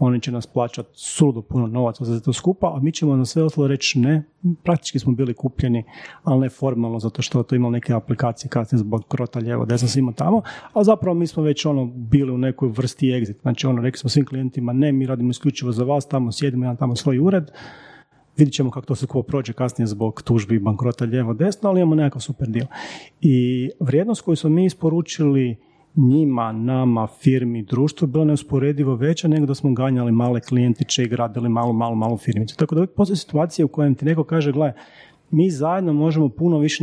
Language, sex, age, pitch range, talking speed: Croatian, male, 40-59, 125-155 Hz, 205 wpm